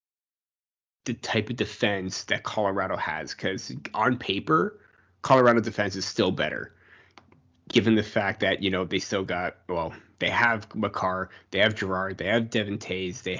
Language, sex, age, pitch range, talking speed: English, male, 20-39, 100-115 Hz, 155 wpm